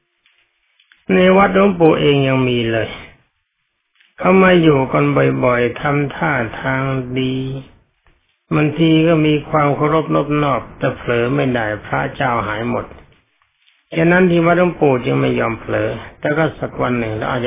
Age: 60-79